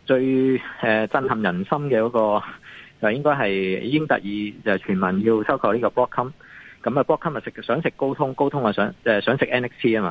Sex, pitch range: male, 105-150 Hz